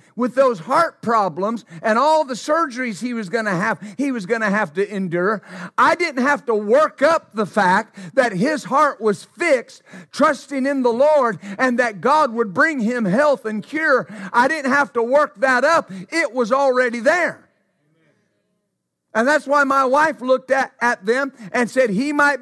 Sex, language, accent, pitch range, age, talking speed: male, English, American, 225-290 Hz, 50-69, 180 wpm